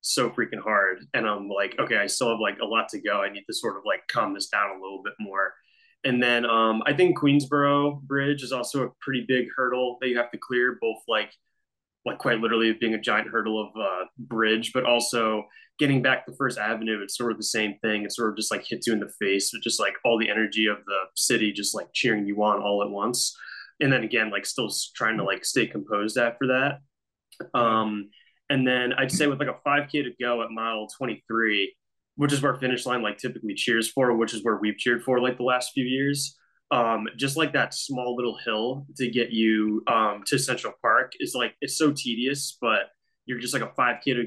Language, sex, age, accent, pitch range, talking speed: English, male, 20-39, American, 110-130 Hz, 230 wpm